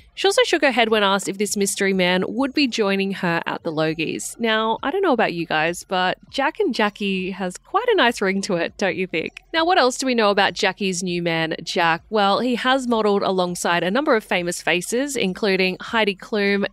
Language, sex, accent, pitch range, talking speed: English, female, Australian, 190-255 Hz, 225 wpm